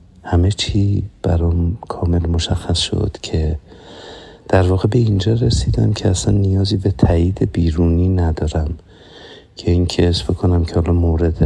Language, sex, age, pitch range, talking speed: Persian, male, 50-69, 80-95 Hz, 140 wpm